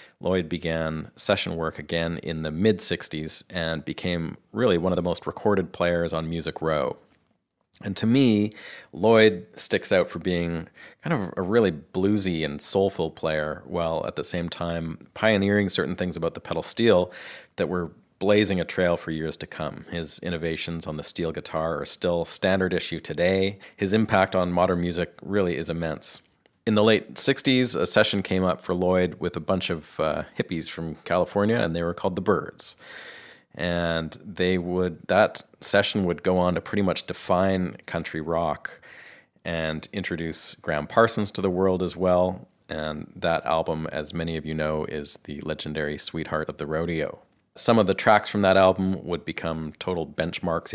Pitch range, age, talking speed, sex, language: 80-95 Hz, 40-59, 175 wpm, male, English